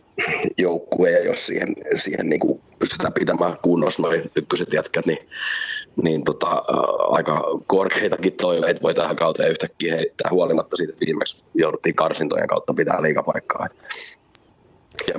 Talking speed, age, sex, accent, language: 135 wpm, 30-49, male, native, Finnish